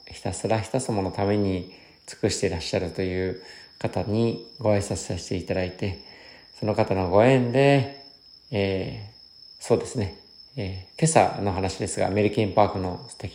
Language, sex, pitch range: Japanese, male, 95-115 Hz